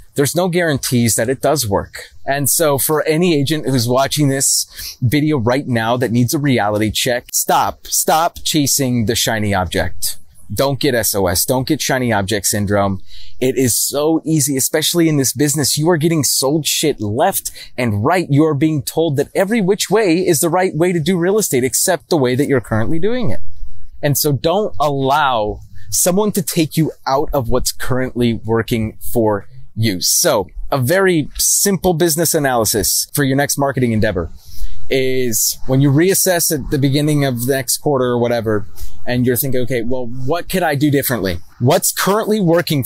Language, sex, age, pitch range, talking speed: English, male, 30-49, 115-160 Hz, 180 wpm